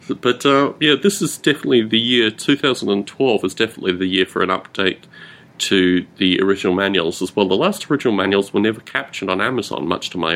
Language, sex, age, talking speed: English, male, 30-49, 215 wpm